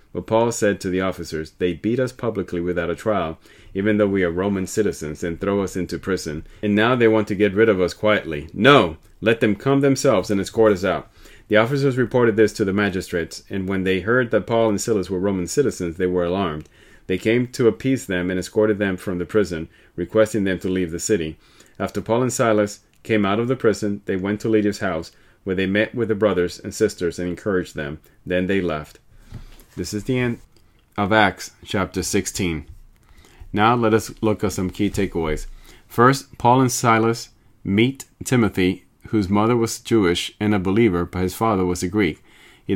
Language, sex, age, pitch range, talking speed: English, male, 30-49, 90-115 Hz, 205 wpm